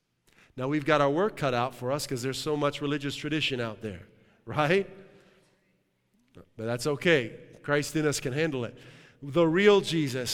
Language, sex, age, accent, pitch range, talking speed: English, male, 40-59, American, 125-155 Hz, 175 wpm